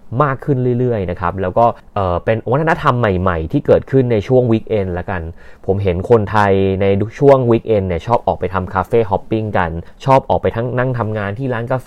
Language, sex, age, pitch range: Thai, male, 20-39, 95-125 Hz